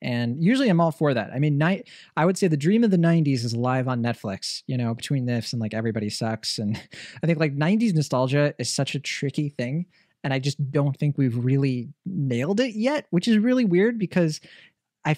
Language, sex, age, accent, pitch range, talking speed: English, male, 20-39, American, 120-155 Hz, 220 wpm